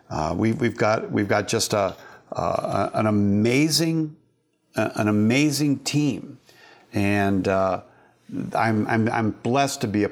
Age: 50-69